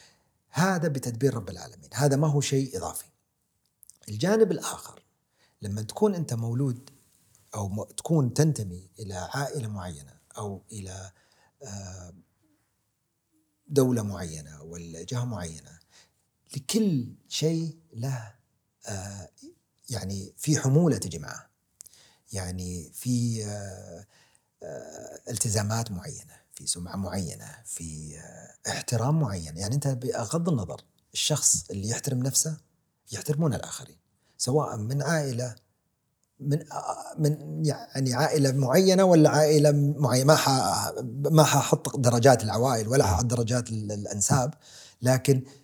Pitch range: 105-155 Hz